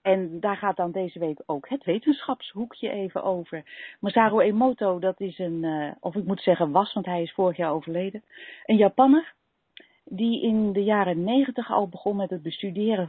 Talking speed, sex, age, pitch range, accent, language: 185 wpm, female, 40-59, 175-220 Hz, Dutch, Dutch